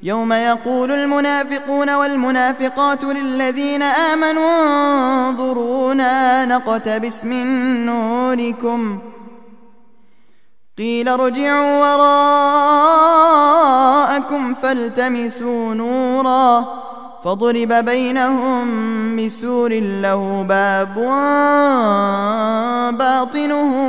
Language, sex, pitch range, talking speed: English, male, 230-285 Hz, 55 wpm